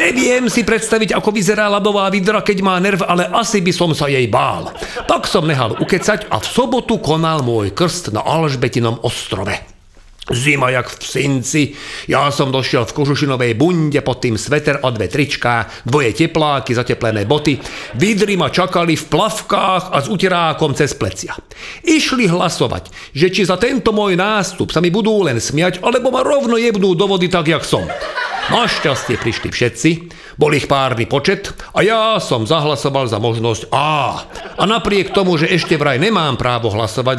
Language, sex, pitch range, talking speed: Slovak, male, 130-195 Hz, 170 wpm